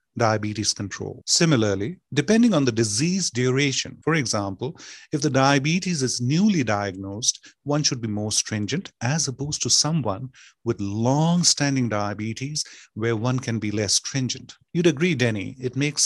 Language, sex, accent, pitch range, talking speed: English, male, Indian, 110-150 Hz, 145 wpm